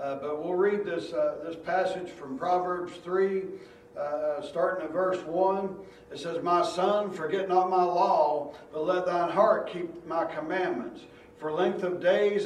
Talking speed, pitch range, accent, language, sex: 170 wpm, 165-200 Hz, American, English, male